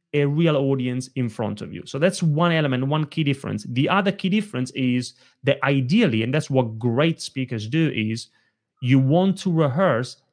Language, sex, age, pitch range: English, male, 30-49, 130-175 Hz